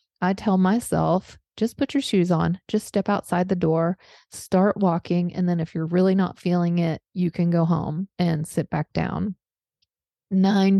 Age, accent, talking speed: 30-49, American, 180 wpm